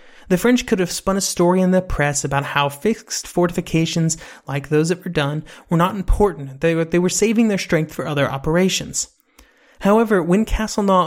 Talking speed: 190 wpm